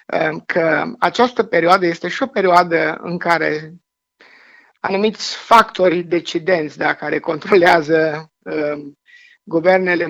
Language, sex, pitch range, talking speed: Romanian, male, 155-185 Hz, 100 wpm